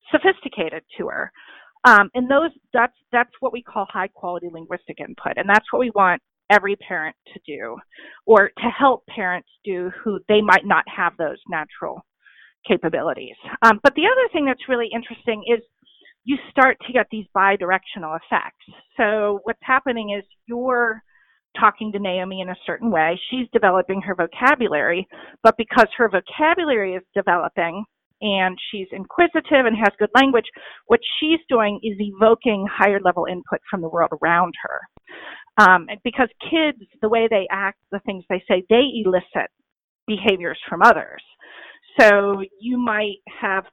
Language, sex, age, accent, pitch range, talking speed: English, female, 40-59, American, 190-240 Hz, 160 wpm